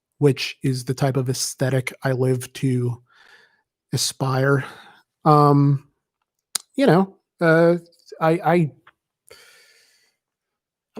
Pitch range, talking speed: 130-160 Hz, 95 wpm